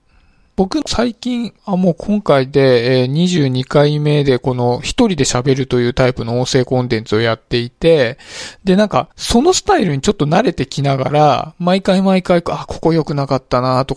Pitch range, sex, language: 130-175 Hz, male, Japanese